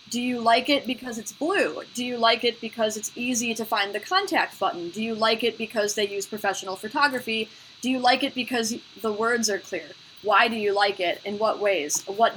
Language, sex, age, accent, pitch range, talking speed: English, female, 20-39, American, 200-245 Hz, 225 wpm